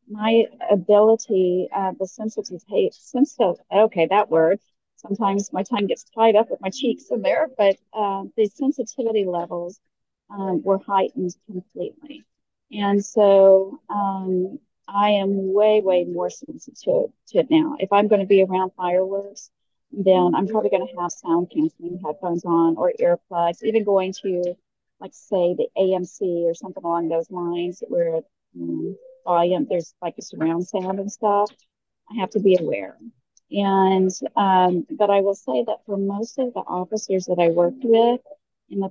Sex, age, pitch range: female, 40-59, 185-220 Hz